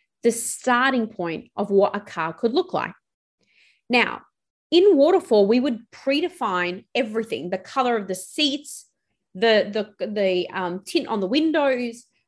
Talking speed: 140 wpm